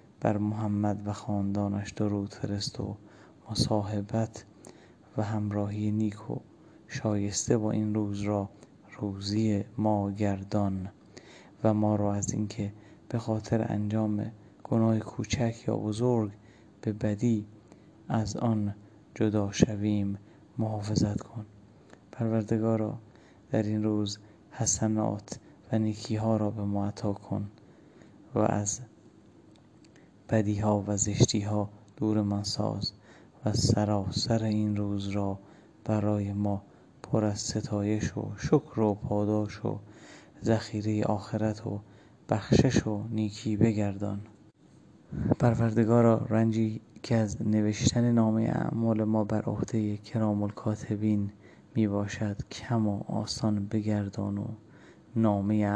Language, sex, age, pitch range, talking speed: English, male, 30-49, 105-110 Hz, 115 wpm